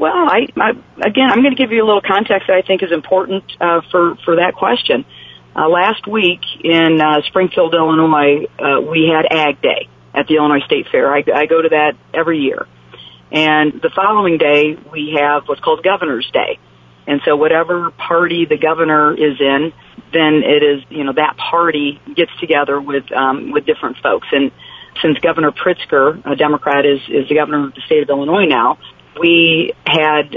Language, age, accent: English, 40-59, American